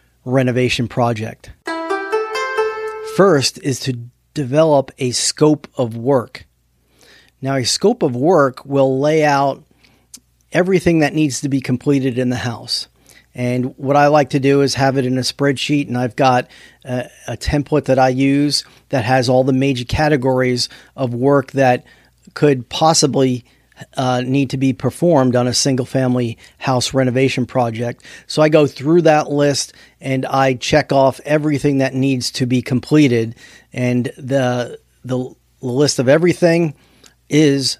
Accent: American